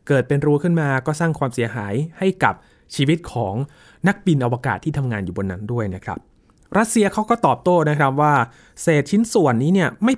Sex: male